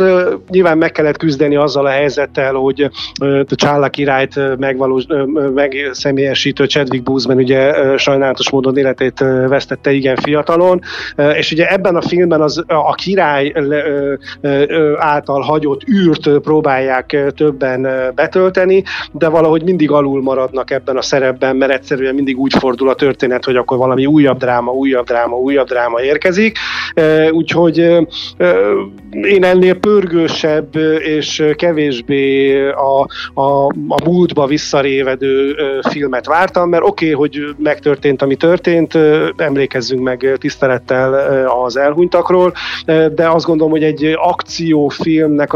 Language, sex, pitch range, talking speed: Hungarian, male, 135-155 Hz, 115 wpm